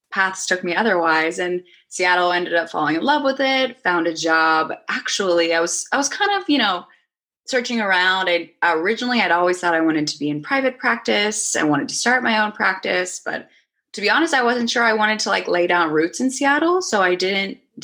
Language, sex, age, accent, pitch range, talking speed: English, female, 20-39, American, 165-235 Hz, 220 wpm